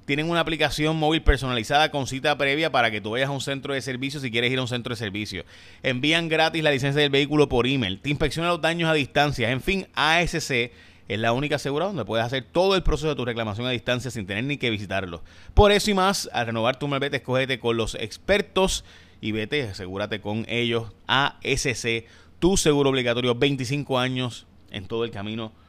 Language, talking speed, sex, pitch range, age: Spanish, 210 wpm, male, 110-140 Hz, 30-49